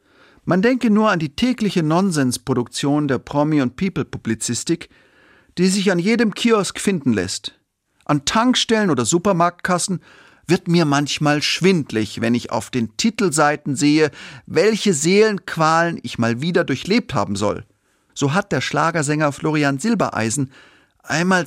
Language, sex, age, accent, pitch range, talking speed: German, male, 40-59, German, 140-200 Hz, 130 wpm